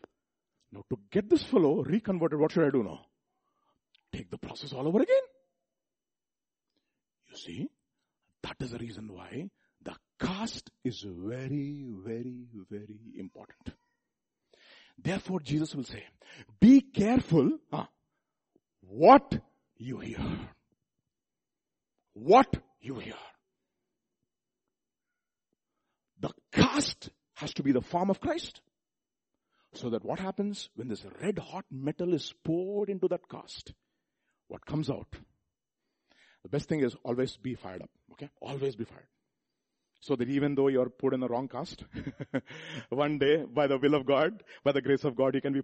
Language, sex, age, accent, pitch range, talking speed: English, male, 50-69, Indian, 125-180 Hz, 140 wpm